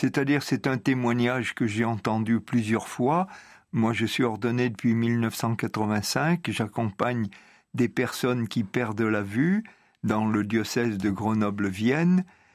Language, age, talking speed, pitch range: French, 50-69, 130 wpm, 110-130 Hz